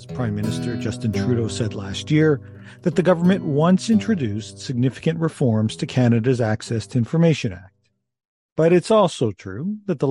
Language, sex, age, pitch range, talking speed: English, male, 50-69, 115-170 Hz, 155 wpm